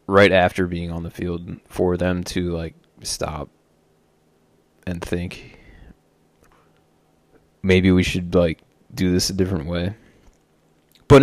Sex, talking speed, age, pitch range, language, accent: male, 125 wpm, 20-39, 90-120 Hz, English, American